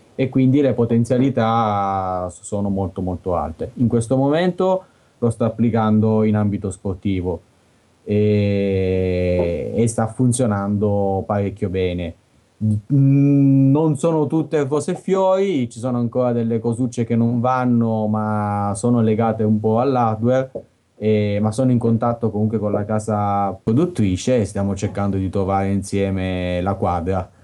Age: 20-39